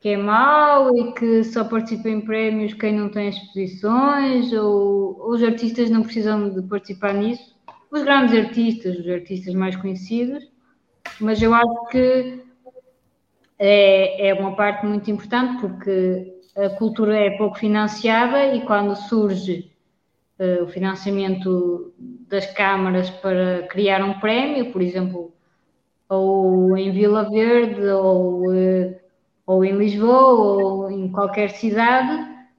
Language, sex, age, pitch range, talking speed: Portuguese, female, 20-39, 195-245 Hz, 130 wpm